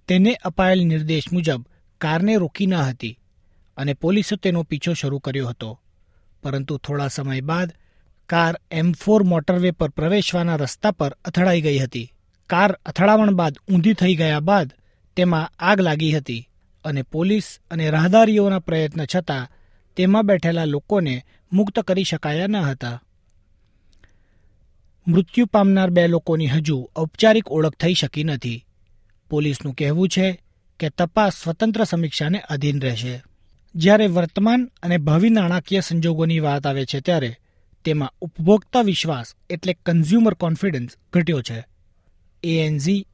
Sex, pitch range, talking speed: male, 135-185 Hz, 130 wpm